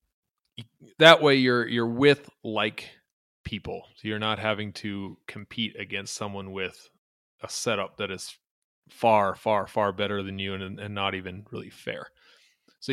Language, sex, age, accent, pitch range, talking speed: English, male, 20-39, American, 105-120 Hz, 155 wpm